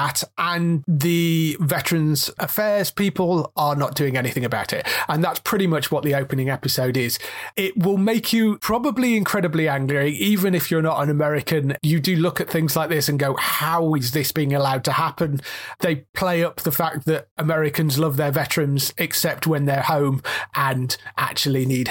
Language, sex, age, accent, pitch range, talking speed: English, male, 30-49, British, 140-175 Hz, 180 wpm